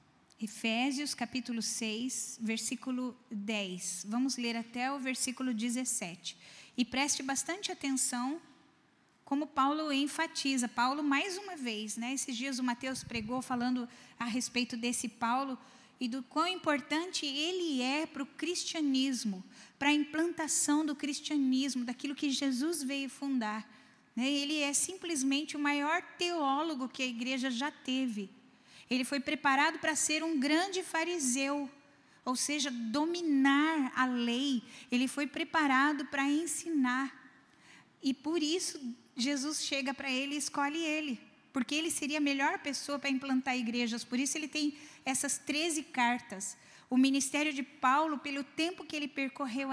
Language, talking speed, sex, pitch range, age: Portuguese, 140 wpm, female, 250-295 Hz, 10-29